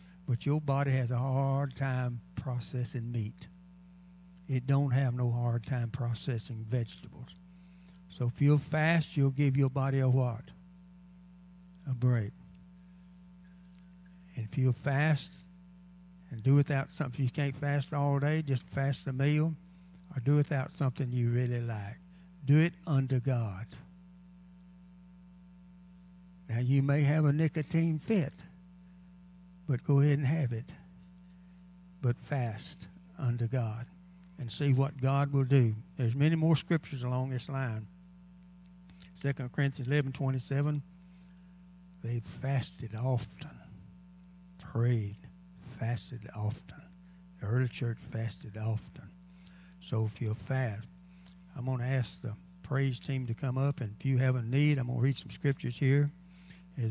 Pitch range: 130-180 Hz